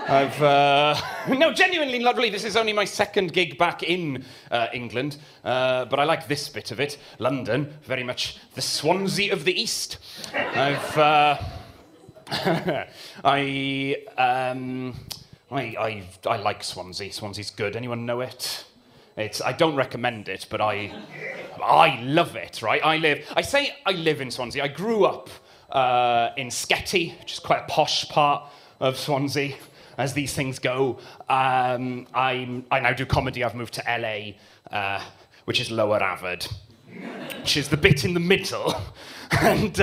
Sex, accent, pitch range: male, British, 125-175 Hz